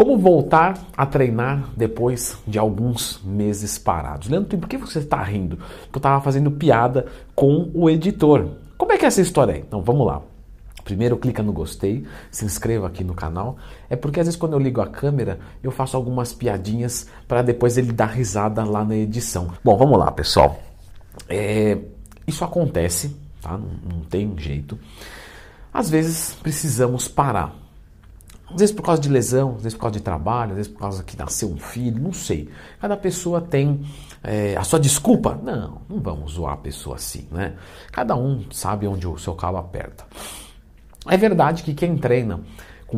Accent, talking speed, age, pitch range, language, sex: Brazilian, 185 wpm, 50-69, 95-140 Hz, Portuguese, male